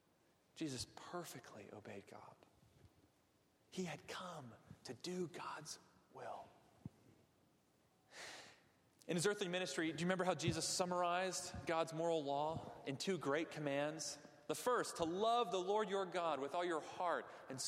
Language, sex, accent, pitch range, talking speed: English, male, American, 150-230 Hz, 140 wpm